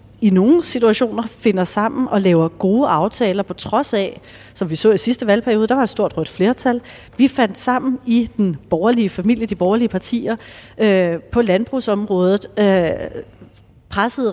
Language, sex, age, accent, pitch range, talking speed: Danish, female, 30-49, native, 190-235 Hz, 165 wpm